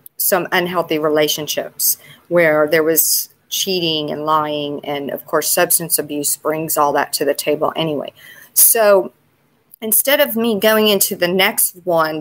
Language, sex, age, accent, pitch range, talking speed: English, female, 40-59, American, 165-235 Hz, 145 wpm